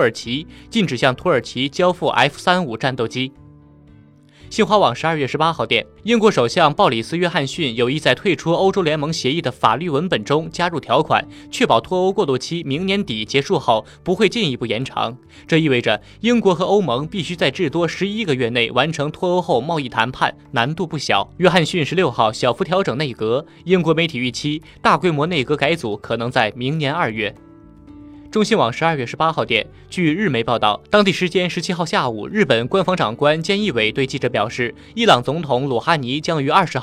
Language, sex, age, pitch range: Chinese, male, 20-39, 125-180 Hz